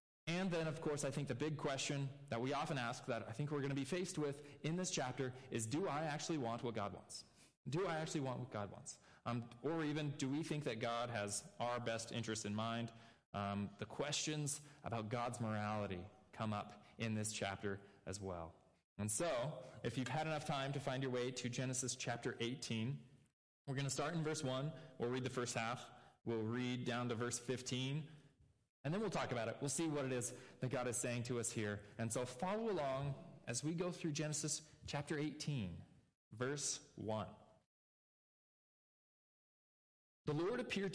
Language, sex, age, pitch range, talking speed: English, male, 20-39, 115-150 Hz, 195 wpm